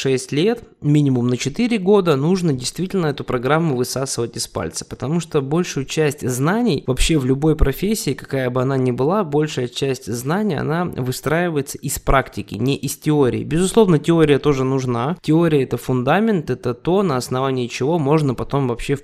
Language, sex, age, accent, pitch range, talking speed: Russian, male, 20-39, native, 130-170 Hz, 165 wpm